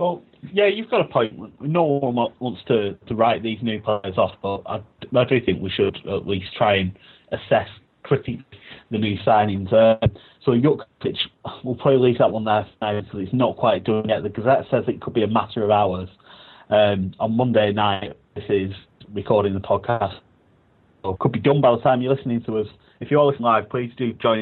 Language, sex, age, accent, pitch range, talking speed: English, male, 30-49, British, 100-120 Hz, 215 wpm